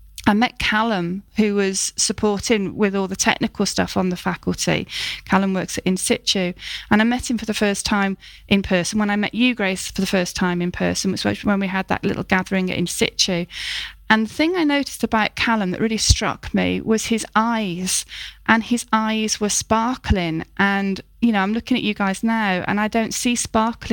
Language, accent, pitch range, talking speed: English, British, 195-240 Hz, 205 wpm